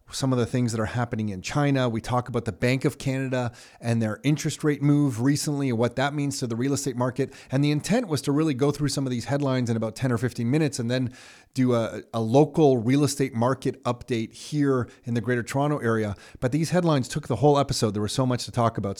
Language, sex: English, male